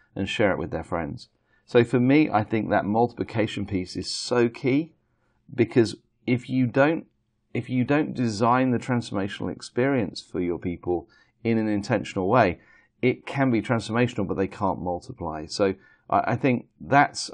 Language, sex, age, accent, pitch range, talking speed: English, male, 40-59, British, 100-125 Hz, 165 wpm